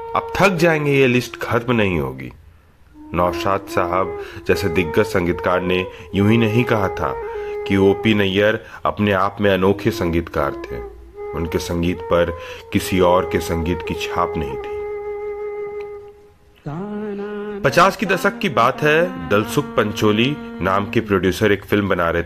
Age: 30-49